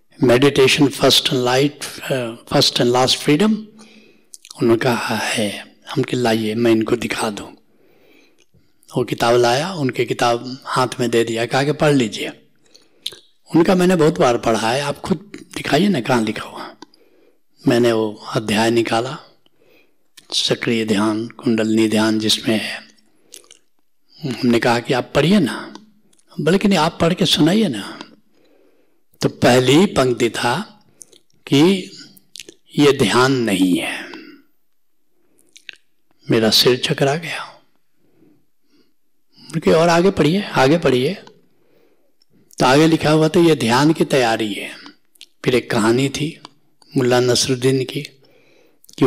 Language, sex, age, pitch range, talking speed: Hindi, male, 60-79, 115-160 Hz, 120 wpm